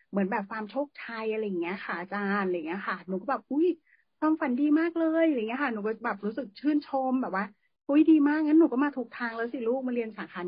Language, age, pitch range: Thai, 30-49, 195-255 Hz